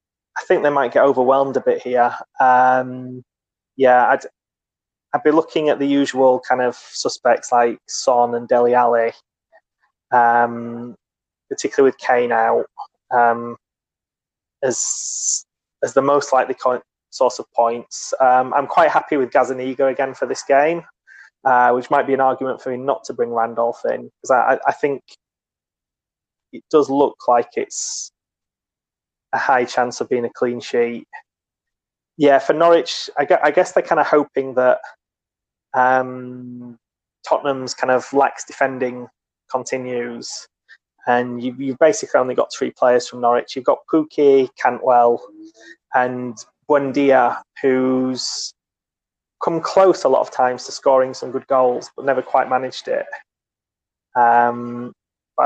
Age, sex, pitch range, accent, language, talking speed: 20-39, male, 120-140 Hz, British, English, 145 wpm